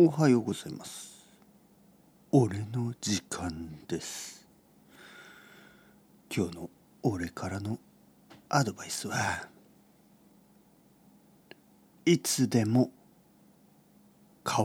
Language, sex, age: Japanese, male, 50-69